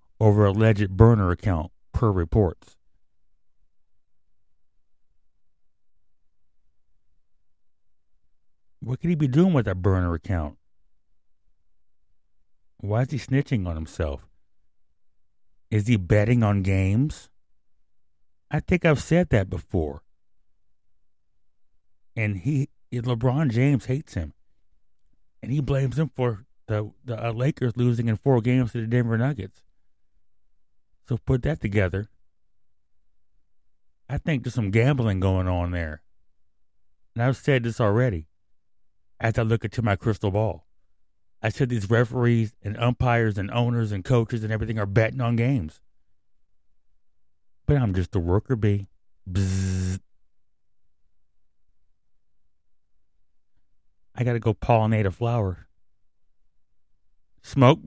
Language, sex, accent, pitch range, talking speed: English, male, American, 90-120 Hz, 115 wpm